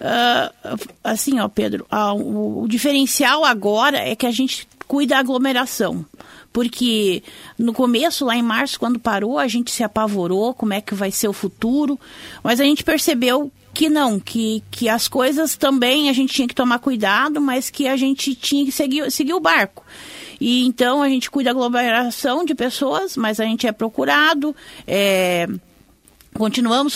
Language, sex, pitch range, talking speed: Portuguese, female, 220-275 Hz, 170 wpm